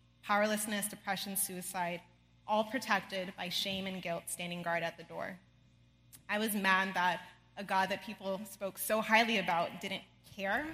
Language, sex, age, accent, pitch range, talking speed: English, female, 20-39, American, 180-215 Hz, 155 wpm